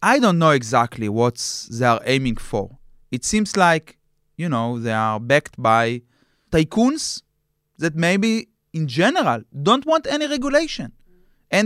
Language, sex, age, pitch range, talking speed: English, male, 30-49, 135-195 Hz, 145 wpm